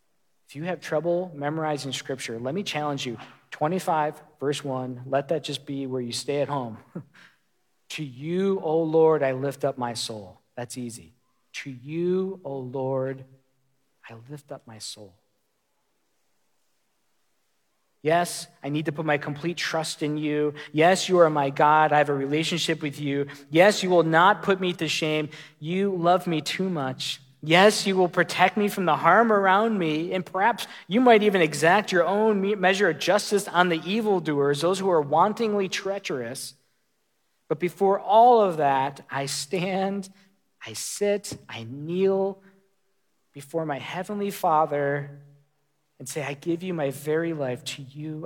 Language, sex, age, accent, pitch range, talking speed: English, male, 40-59, American, 135-185 Hz, 160 wpm